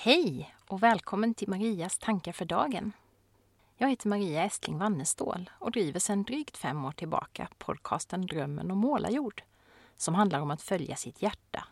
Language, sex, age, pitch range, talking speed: Swedish, female, 30-49, 165-230 Hz, 165 wpm